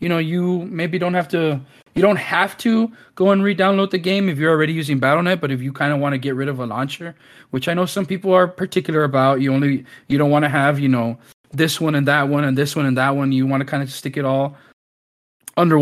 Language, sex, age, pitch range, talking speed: English, male, 20-39, 130-155 Hz, 265 wpm